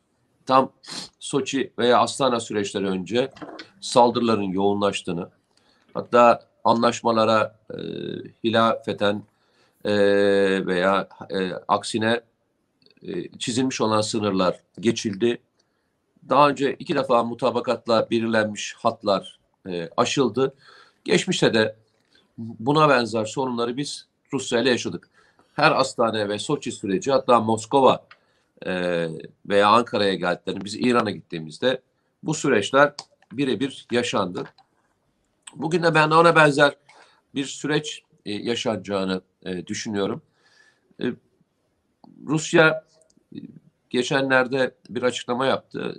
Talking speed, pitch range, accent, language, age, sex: 90 wpm, 100-130 Hz, native, Turkish, 50-69, male